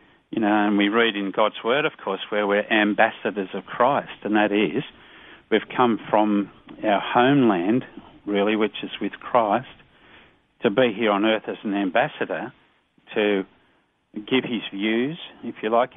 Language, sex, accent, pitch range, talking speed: English, male, Australian, 105-120 Hz, 160 wpm